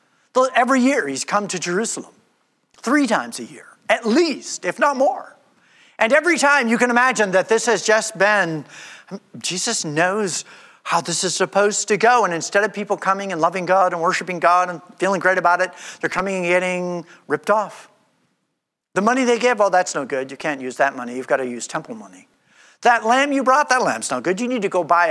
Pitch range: 180-245 Hz